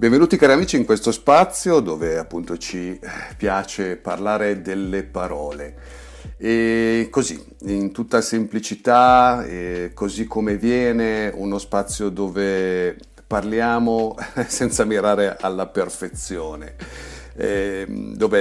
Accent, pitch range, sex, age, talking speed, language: native, 90-115 Hz, male, 50-69, 100 wpm, Italian